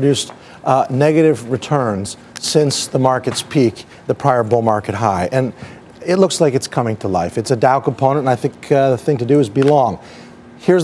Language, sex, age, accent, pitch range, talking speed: English, male, 40-59, American, 125-155 Hz, 200 wpm